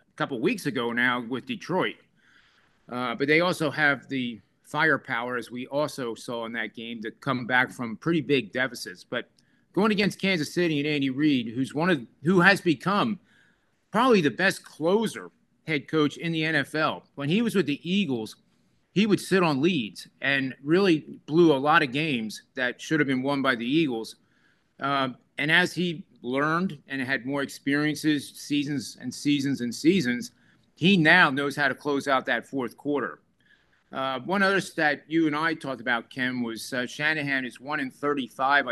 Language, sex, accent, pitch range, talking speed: English, male, American, 130-165 Hz, 180 wpm